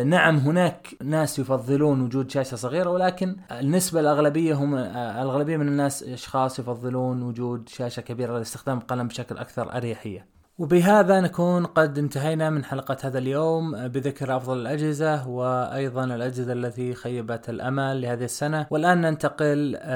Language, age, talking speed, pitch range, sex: Arabic, 20-39, 130 wpm, 125-150 Hz, male